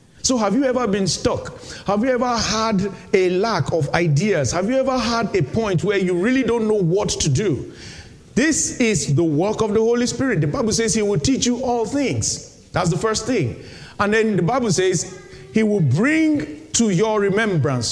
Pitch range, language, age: 160-220 Hz, English, 50-69